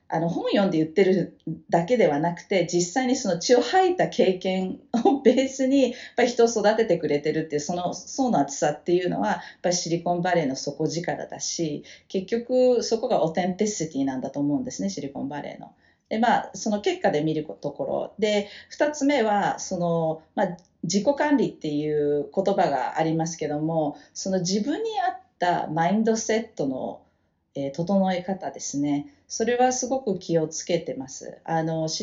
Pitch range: 160-235 Hz